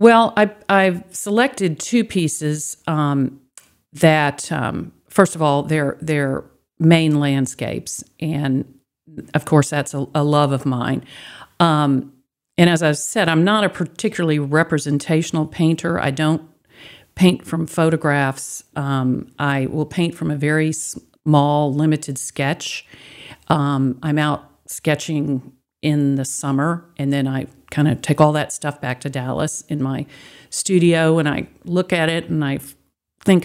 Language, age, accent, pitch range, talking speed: English, 50-69, American, 140-170 Hz, 145 wpm